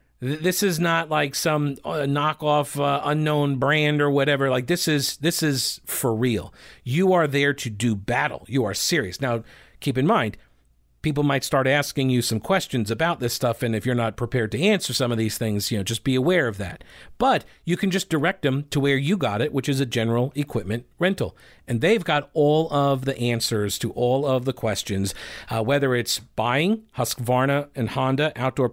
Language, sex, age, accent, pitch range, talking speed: English, male, 40-59, American, 120-150 Hz, 200 wpm